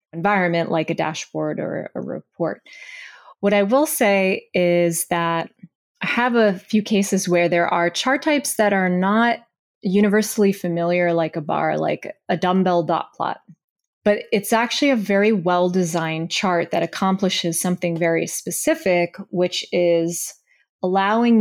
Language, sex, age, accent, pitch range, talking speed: English, female, 20-39, American, 175-215 Hz, 145 wpm